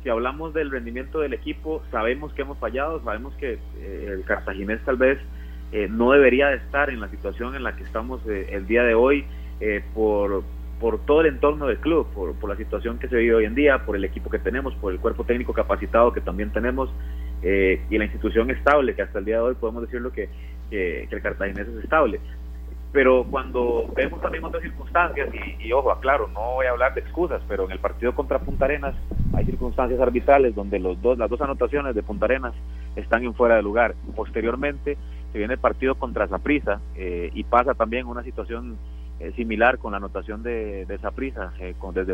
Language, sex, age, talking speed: Spanish, male, 30-49, 210 wpm